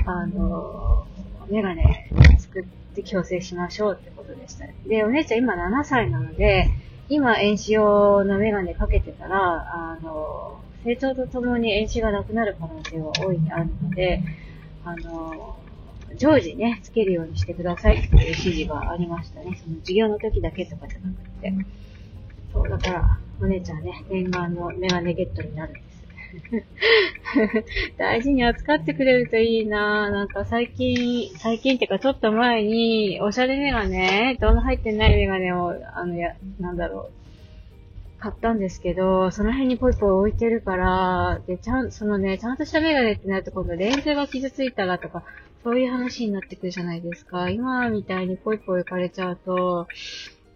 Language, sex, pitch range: Japanese, female, 170-225 Hz